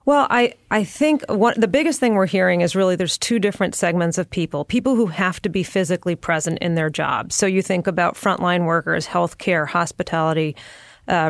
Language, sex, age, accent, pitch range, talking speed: English, female, 30-49, American, 165-195 Hz, 200 wpm